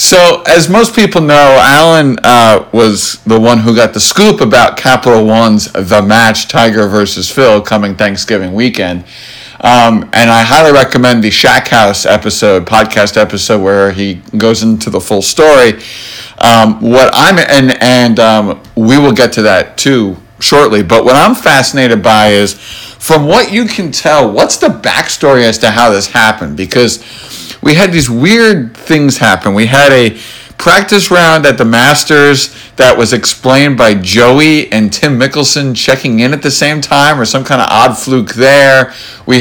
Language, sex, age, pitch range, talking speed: English, male, 50-69, 110-140 Hz, 170 wpm